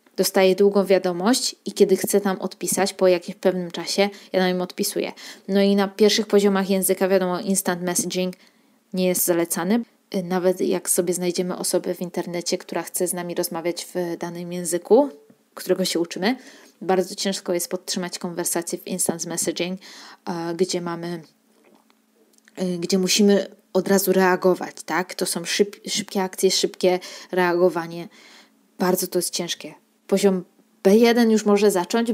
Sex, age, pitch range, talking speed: female, 20-39, 180-210 Hz, 145 wpm